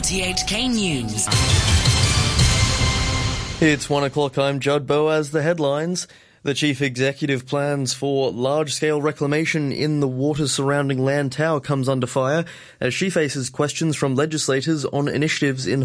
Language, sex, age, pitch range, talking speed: English, male, 20-39, 125-150 Hz, 135 wpm